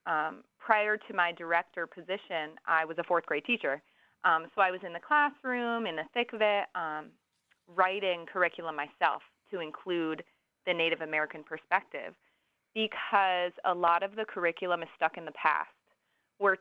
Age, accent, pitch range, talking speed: 20-39, American, 160-190 Hz, 165 wpm